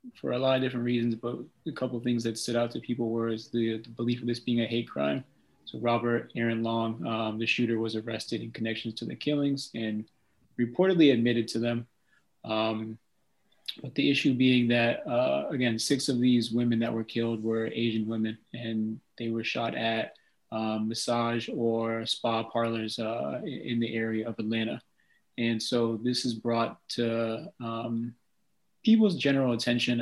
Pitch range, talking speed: 110-120 Hz, 180 wpm